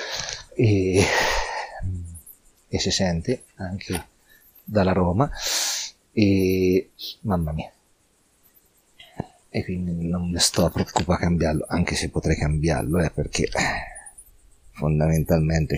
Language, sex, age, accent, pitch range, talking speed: Italian, male, 40-59, native, 80-95 Hz, 100 wpm